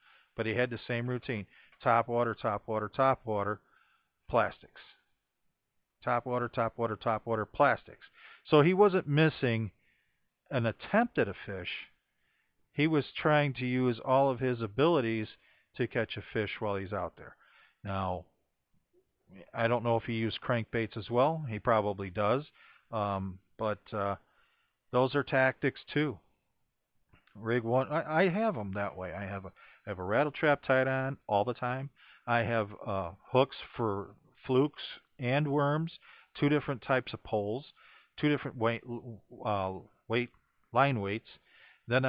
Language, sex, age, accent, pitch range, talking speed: English, male, 50-69, American, 105-130 Hz, 155 wpm